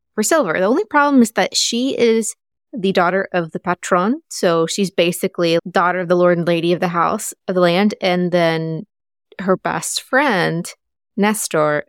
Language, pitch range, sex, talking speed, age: English, 165-205 Hz, female, 180 wpm, 20-39